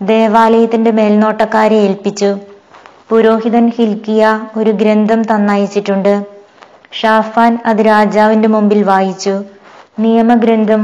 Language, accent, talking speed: Malayalam, native, 80 wpm